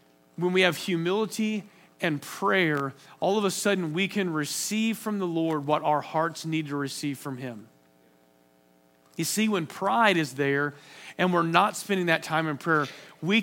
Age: 40-59